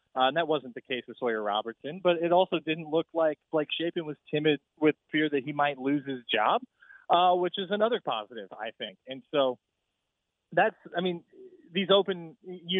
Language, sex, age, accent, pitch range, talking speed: English, male, 30-49, American, 130-165 Hz, 195 wpm